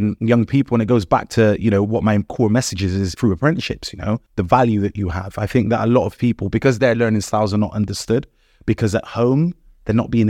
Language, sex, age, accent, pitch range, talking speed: English, male, 30-49, British, 105-125 Hz, 255 wpm